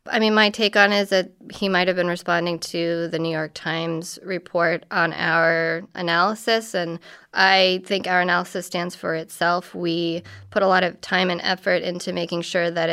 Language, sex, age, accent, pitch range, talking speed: English, female, 20-39, American, 170-185 Hz, 195 wpm